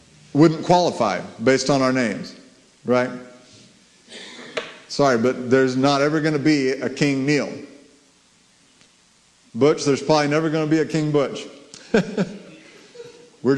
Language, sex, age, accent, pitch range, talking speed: English, male, 50-69, American, 130-185 Hz, 120 wpm